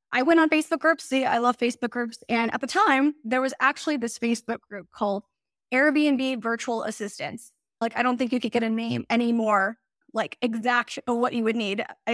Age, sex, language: 10-29, female, English